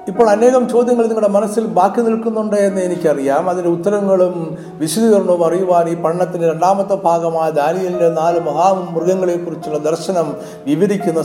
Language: Malayalam